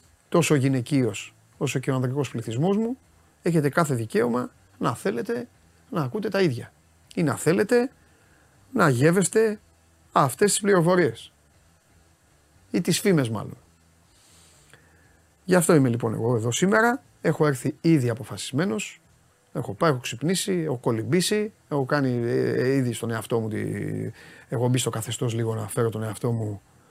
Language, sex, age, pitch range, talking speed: Greek, male, 30-49, 115-160 Hz, 150 wpm